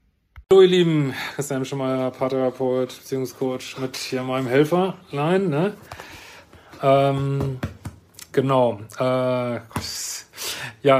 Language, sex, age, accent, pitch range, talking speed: German, male, 30-49, German, 125-150 Hz, 95 wpm